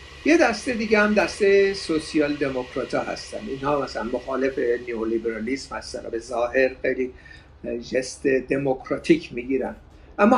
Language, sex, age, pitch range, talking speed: Persian, male, 50-69, 145-200 Hz, 120 wpm